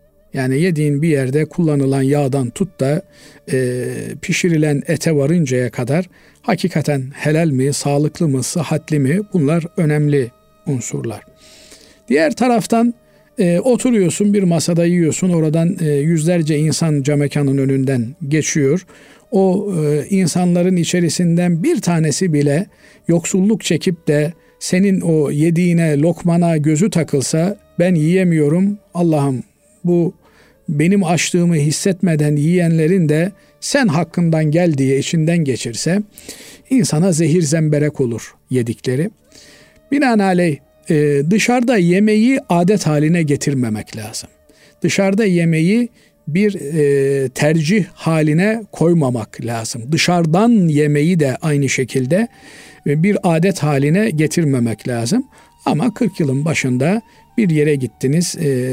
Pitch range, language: 145-185 Hz, Turkish